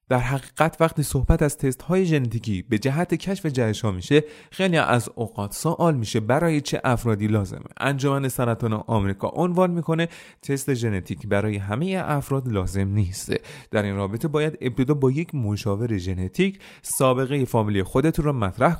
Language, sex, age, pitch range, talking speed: Persian, male, 30-49, 105-150 Hz, 155 wpm